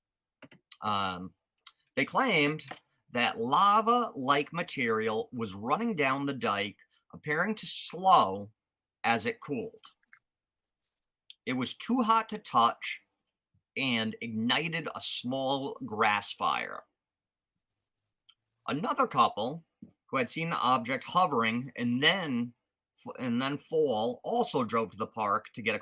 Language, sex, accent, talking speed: English, male, American, 115 wpm